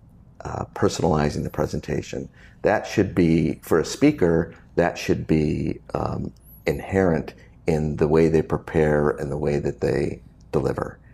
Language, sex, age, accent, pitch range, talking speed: English, male, 50-69, American, 75-80 Hz, 140 wpm